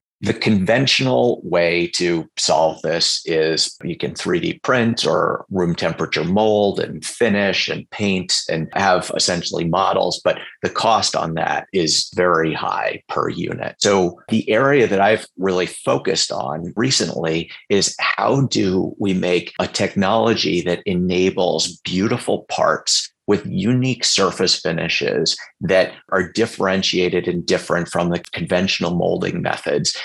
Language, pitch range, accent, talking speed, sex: English, 85-100 Hz, American, 135 wpm, male